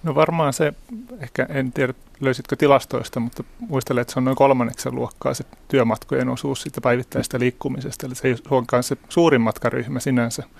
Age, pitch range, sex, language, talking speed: 30-49, 115-130 Hz, male, Finnish, 170 wpm